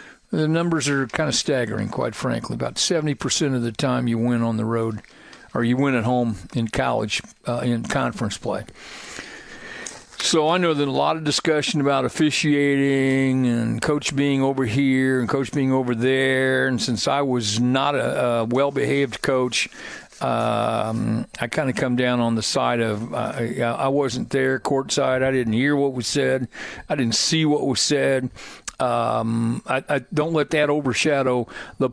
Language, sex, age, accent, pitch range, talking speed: English, male, 60-79, American, 120-145 Hz, 175 wpm